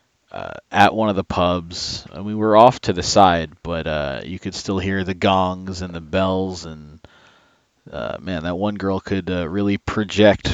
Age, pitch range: 30-49, 90-110 Hz